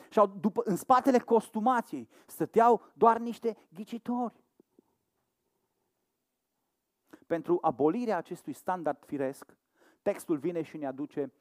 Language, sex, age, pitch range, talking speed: Romanian, male, 40-59, 160-235 Hz, 95 wpm